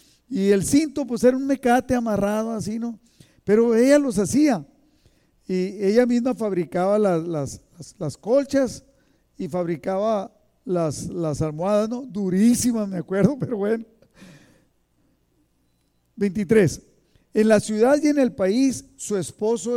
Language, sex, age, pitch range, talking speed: Spanish, male, 50-69, 180-240 Hz, 130 wpm